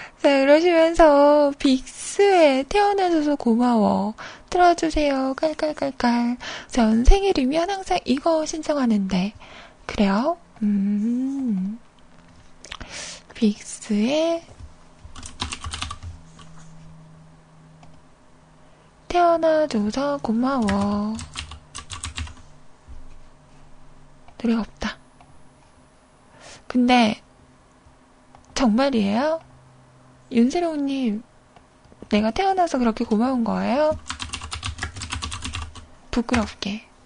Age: 20-39